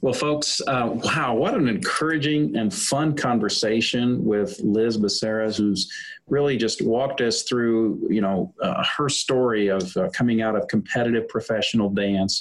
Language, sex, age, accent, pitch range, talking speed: English, male, 40-59, American, 100-120 Hz, 155 wpm